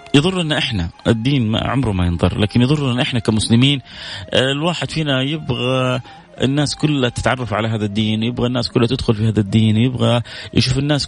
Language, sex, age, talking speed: Arabic, male, 30-49, 155 wpm